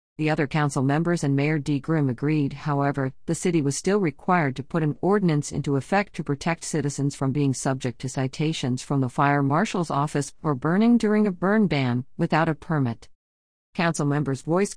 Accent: American